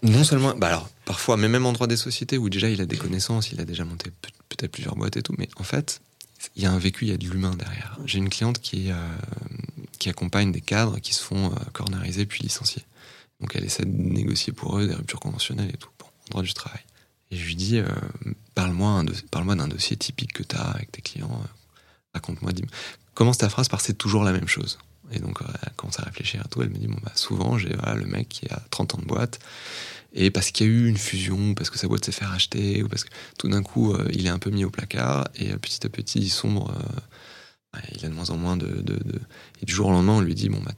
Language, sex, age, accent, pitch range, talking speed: French, male, 30-49, French, 95-120 Hz, 270 wpm